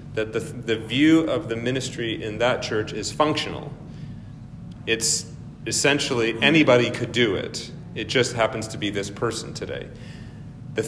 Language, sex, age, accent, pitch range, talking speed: English, male, 40-59, American, 110-140 Hz, 150 wpm